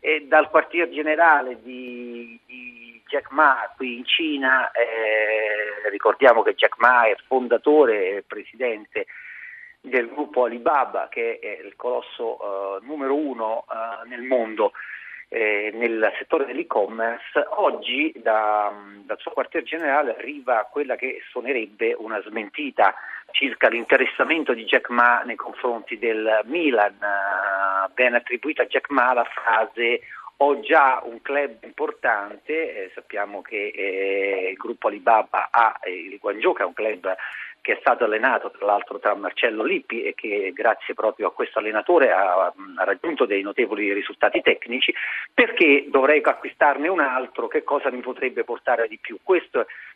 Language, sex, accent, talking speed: Italian, male, native, 140 wpm